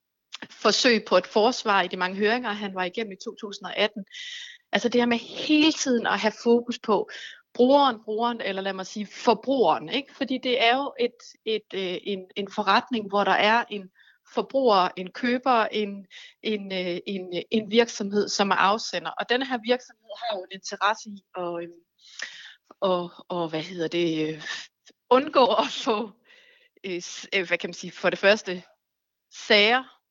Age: 30-49